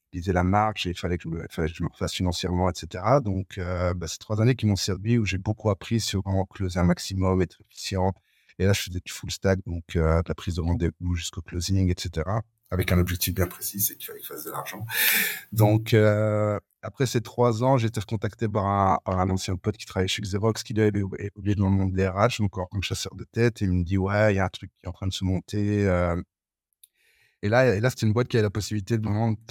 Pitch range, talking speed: 90-110 Hz, 255 wpm